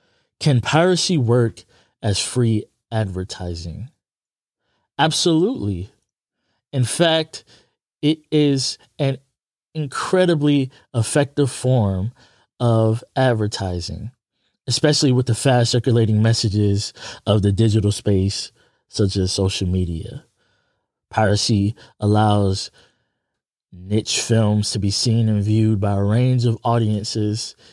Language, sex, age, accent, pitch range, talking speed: English, male, 20-39, American, 100-125 Hz, 95 wpm